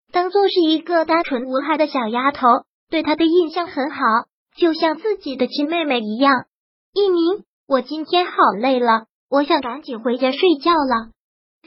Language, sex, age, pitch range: Chinese, male, 20-39, 265-330 Hz